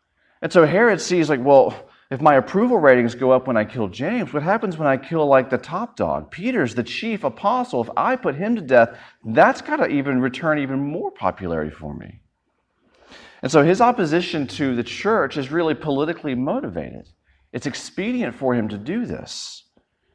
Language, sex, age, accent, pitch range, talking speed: English, male, 40-59, American, 110-165 Hz, 190 wpm